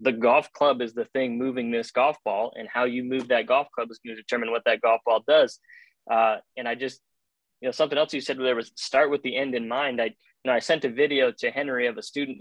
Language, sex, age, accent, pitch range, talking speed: English, male, 20-39, American, 125-150 Hz, 270 wpm